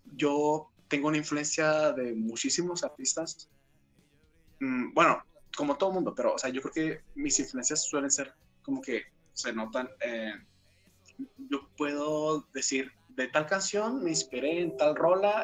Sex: male